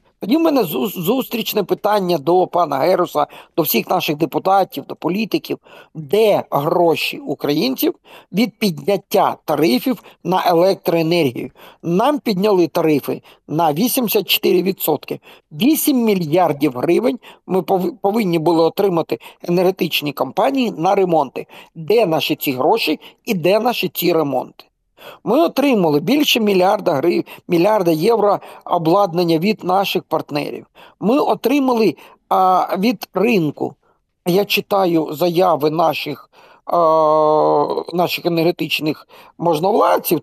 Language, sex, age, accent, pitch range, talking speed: Ukrainian, male, 50-69, native, 165-215 Hz, 105 wpm